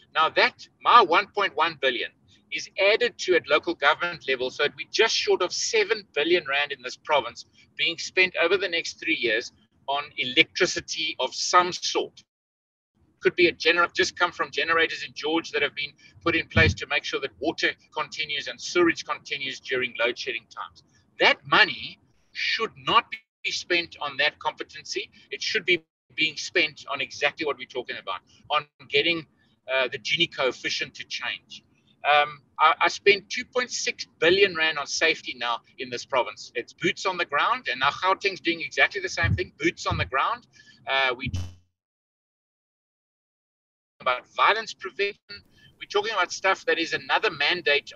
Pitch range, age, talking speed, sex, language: 145-245 Hz, 60-79, 170 wpm, male, English